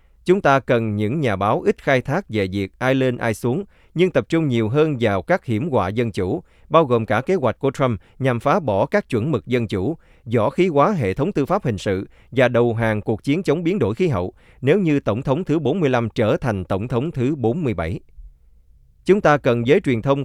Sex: male